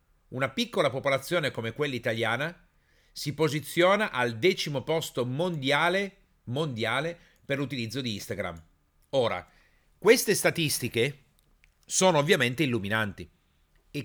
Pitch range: 110-150 Hz